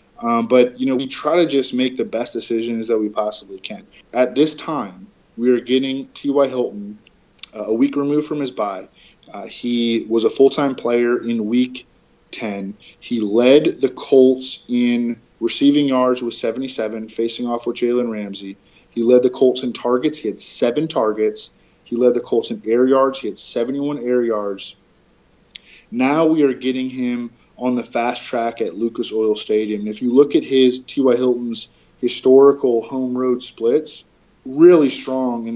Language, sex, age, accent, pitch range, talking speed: English, male, 20-39, American, 110-130 Hz, 175 wpm